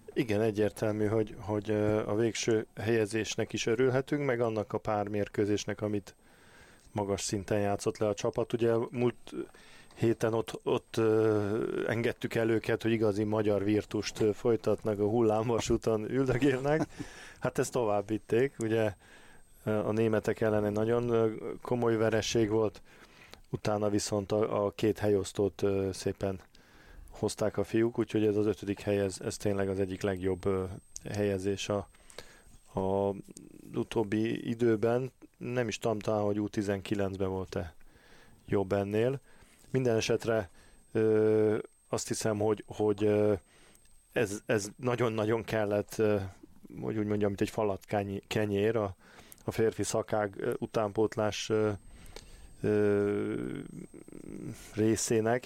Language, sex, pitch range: Hungarian, male, 105-115 Hz